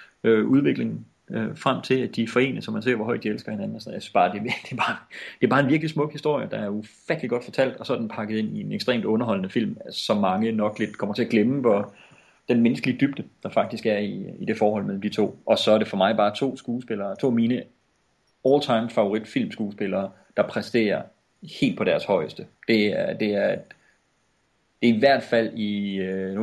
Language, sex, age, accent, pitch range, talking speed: English, male, 30-49, Danish, 100-120 Hz, 225 wpm